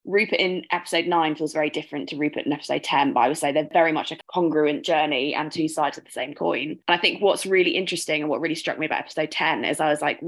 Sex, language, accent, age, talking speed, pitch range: female, English, British, 20-39, 275 wpm, 150-175 Hz